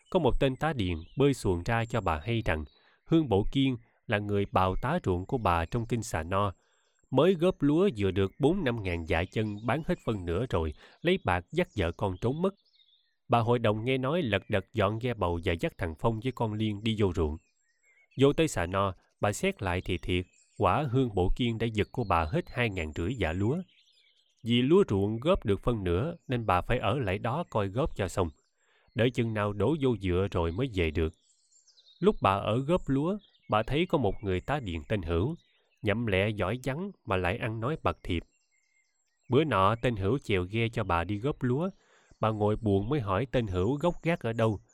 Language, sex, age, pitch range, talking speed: Vietnamese, male, 20-39, 95-135 Hz, 220 wpm